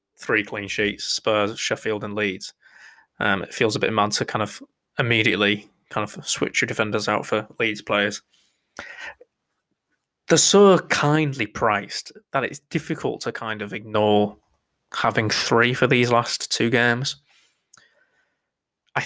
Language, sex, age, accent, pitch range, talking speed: English, male, 20-39, British, 110-130 Hz, 140 wpm